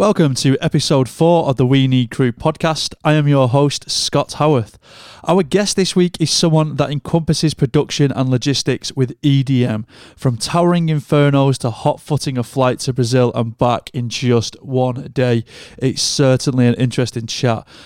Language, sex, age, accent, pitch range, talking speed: English, male, 30-49, British, 125-150 Hz, 165 wpm